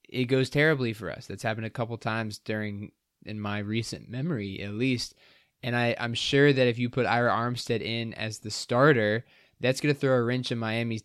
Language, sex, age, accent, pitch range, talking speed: English, male, 20-39, American, 110-125 Hz, 210 wpm